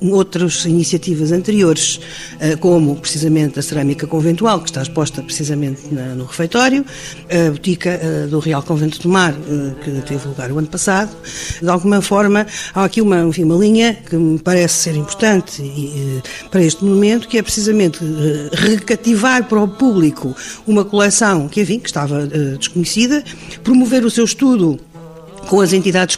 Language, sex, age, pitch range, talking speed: Portuguese, female, 50-69, 155-200 Hz, 150 wpm